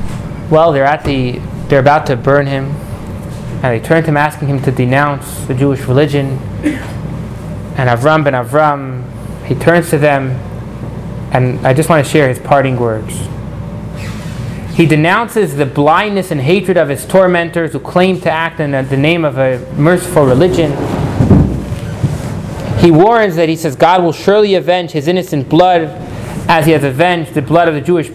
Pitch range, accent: 140-175 Hz, American